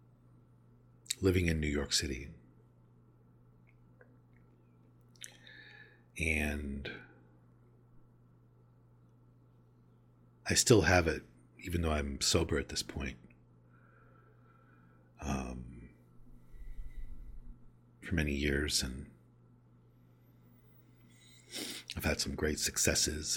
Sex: male